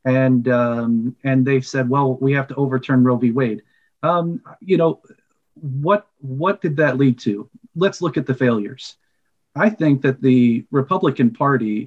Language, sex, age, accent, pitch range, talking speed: English, male, 40-59, American, 125-155 Hz, 165 wpm